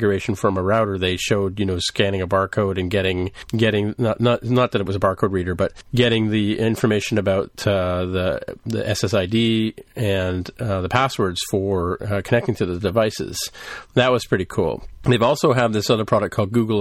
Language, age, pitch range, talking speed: English, 40-59, 95-115 Hz, 190 wpm